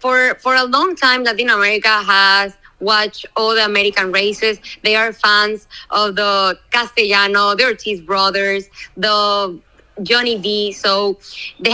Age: 20-39